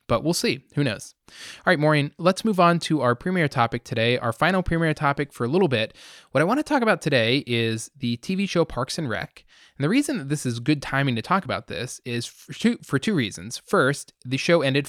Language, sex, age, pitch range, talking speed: English, male, 20-39, 120-150 Hz, 240 wpm